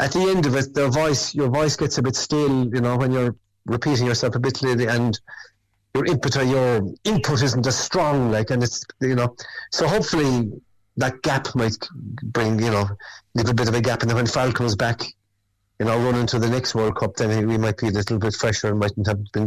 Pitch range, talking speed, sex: 105-140 Hz, 235 wpm, male